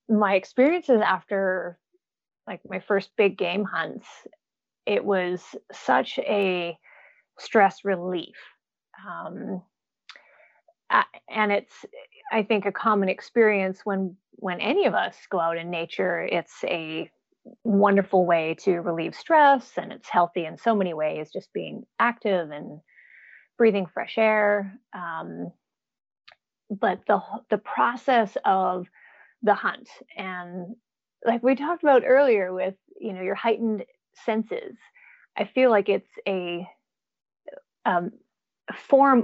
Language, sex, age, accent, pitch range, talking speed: English, female, 30-49, American, 185-235 Hz, 125 wpm